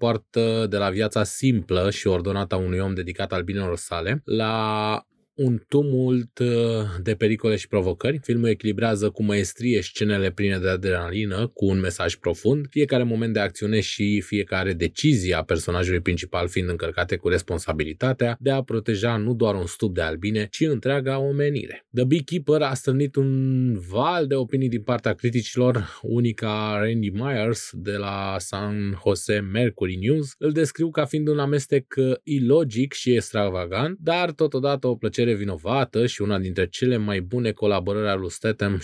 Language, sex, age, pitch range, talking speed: Romanian, male, 20-39, 100-135 Hz, 160 wpm